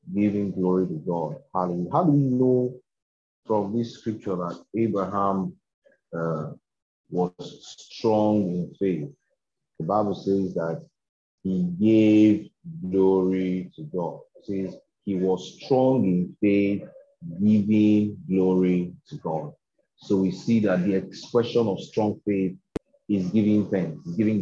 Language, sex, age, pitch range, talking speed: English, male, 30-49, 95-120 Hz, 135 wpm